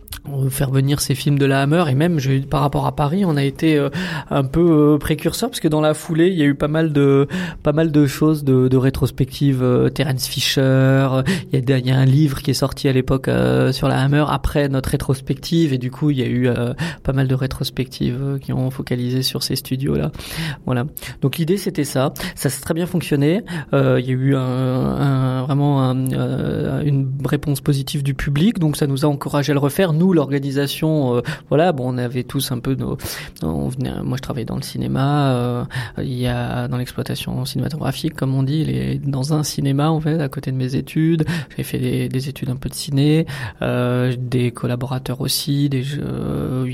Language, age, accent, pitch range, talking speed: French, 20-39, French, 130-150 Hz, 205 wpm